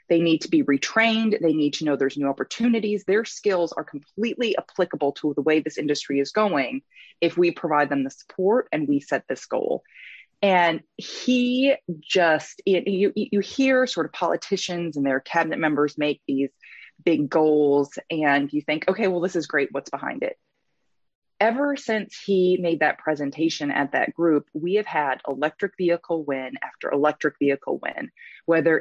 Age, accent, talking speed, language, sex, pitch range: 20-39, American, 175 wpm, English, female, 150-200 Hz